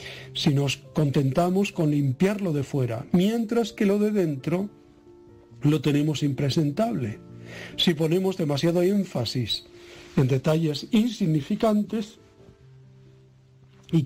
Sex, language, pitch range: male, Spanish, 130-185 Hz